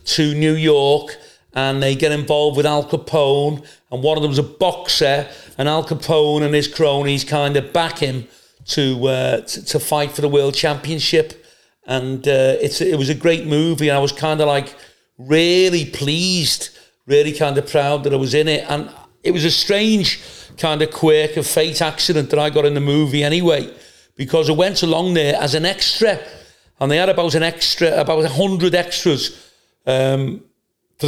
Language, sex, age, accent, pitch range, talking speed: English, male, 40-59, British, 135-155 Hz, 190 wpm